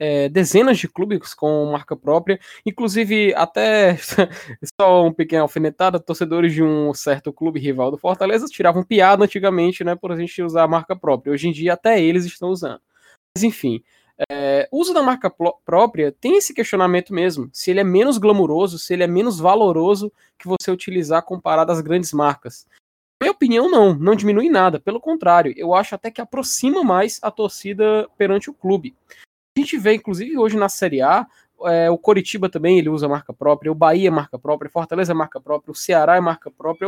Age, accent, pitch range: 10-29, Brazilian, 165-215 Hz